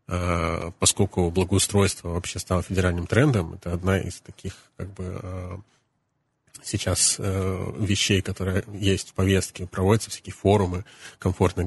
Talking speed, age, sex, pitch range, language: 115 wpm, 30-49, male, 90-100 Hz, Russian